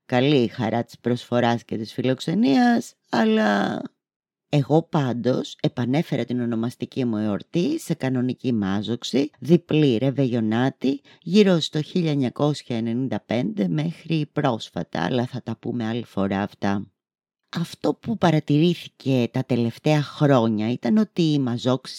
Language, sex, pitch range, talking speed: Greek, female, 120-180 Hz, 115 wpm